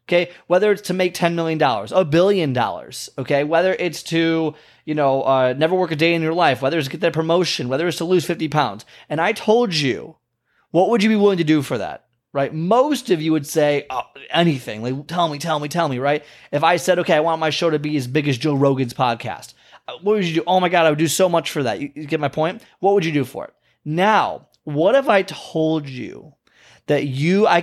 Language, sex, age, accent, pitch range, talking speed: English, male, 20-39, American, 125-170 Hz, 250 wpm